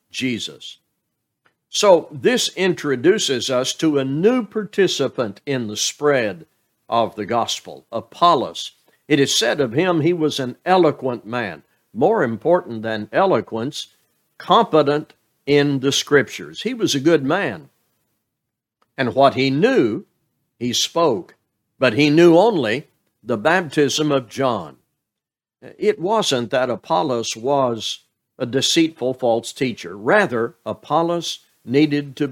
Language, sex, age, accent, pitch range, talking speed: English, male, 60-79, American, 125-165 Hz, 125 wpm